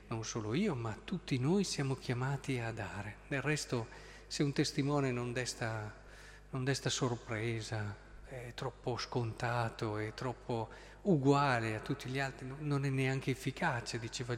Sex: male